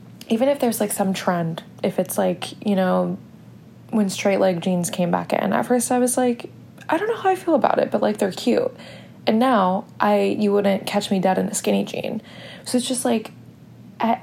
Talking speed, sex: 220 wpm, female